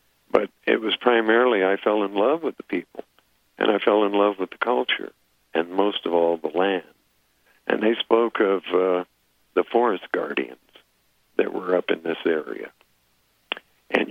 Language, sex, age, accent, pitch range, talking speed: English, male, 50-69, American, 80-95 Hz, 170 wpm